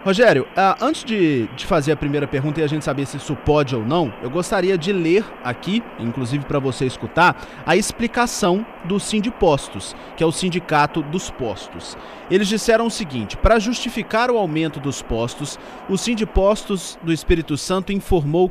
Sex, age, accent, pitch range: male, 30-49, Brazilian, 150-200 Hz